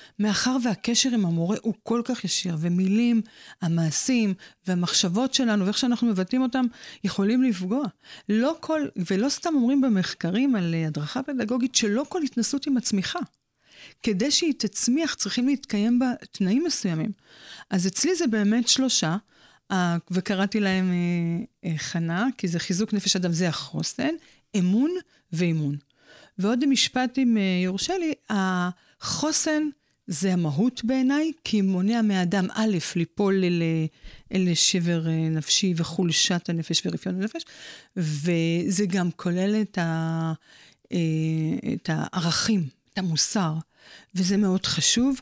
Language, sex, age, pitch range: Hebrew, female, 40-59, 180-250 Hz